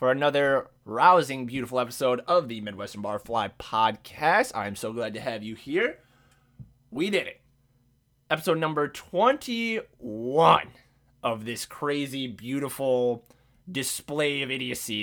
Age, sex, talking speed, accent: 20-39, male, 125 wpm, American